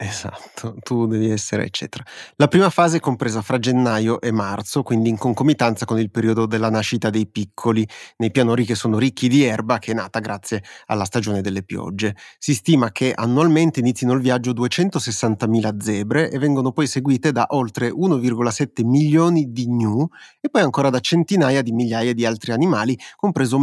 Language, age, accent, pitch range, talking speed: Italian, 30-49, native, 115-140 Hz, 175 wpm